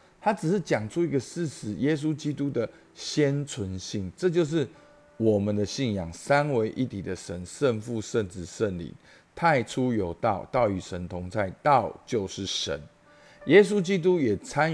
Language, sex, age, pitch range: Chinese, male, 50-69, 100-150 Hz